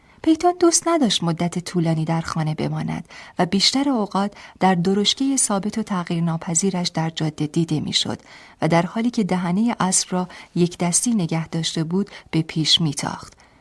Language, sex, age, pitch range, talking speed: Persian, female, 40-59, 165-210 Hz, 160 wpm